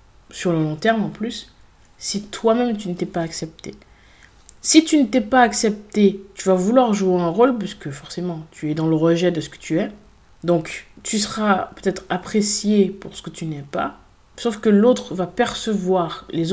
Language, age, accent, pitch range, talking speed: French, 20-39, French, 170-210 Hz, 195 wpm